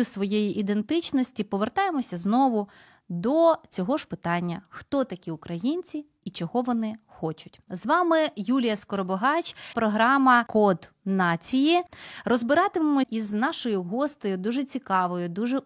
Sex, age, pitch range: female, 20-39, 205-280 Hz